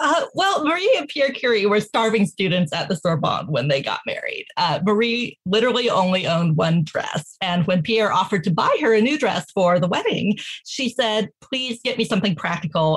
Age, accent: 30-49, American